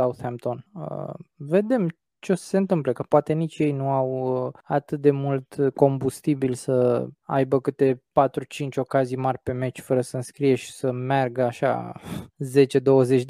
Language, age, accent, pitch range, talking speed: Romanian, 20-39, native, 130-150 Hz, 160 wpm